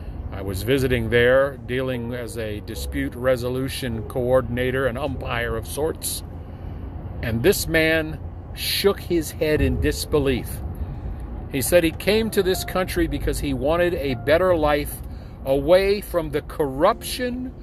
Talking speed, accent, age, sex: 135 wpm, American, 50-69, male